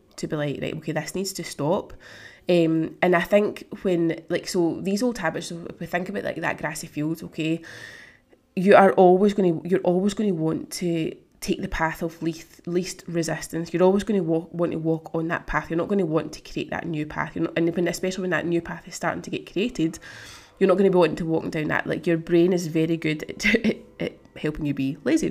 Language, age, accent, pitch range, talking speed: English, 20-39, British, 160-190 Hz, 240 wpm